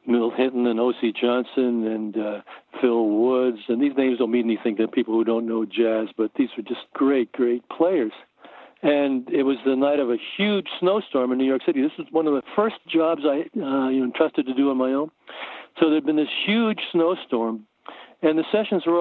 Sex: male